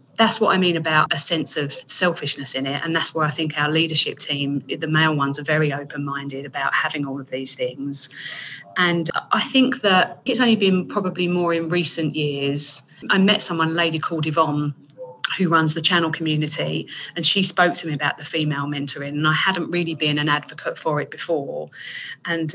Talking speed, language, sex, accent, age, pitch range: 200 wpm, English, female, British, 30-49, 145-170 Hz